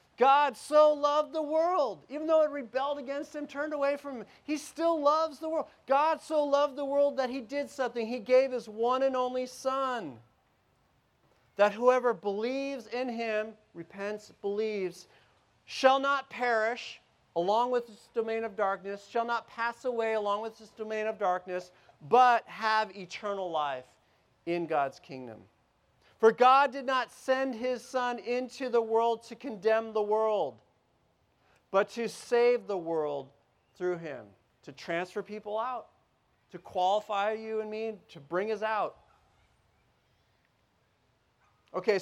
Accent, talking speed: American, 150 wpm